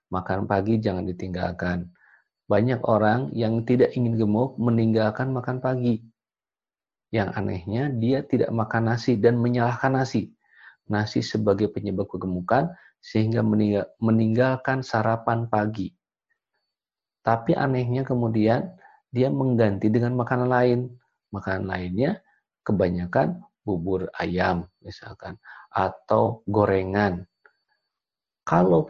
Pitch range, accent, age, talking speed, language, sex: 100-125 Hz, native, 40-59, 100 wpm, Indonesian, male